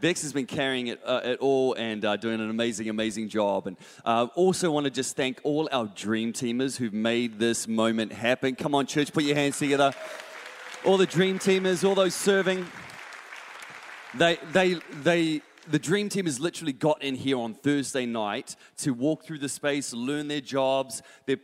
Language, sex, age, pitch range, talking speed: English, male, 30-49, 110-140 Hz, 195 wpm